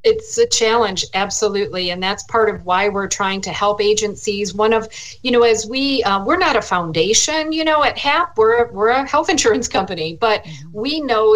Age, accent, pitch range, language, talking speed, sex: 50-69, American, 180-225 Hz, English, 200 wpm, female